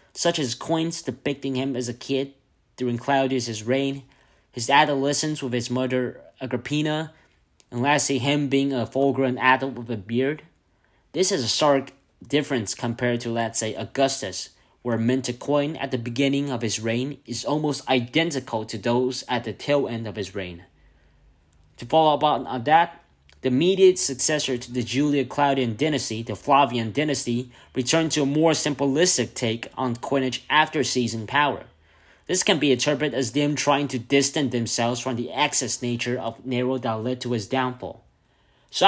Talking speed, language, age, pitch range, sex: 165 wpm, English, 20-39, 120-145 Hz, male